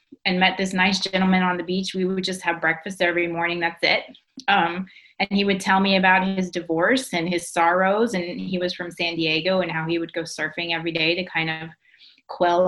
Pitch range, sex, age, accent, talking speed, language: 175-215 Hz, female, 20-39, American, 220 wpm, English